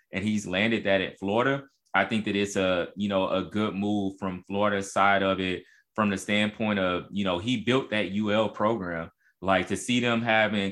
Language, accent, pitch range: English, American, 95-115 Hz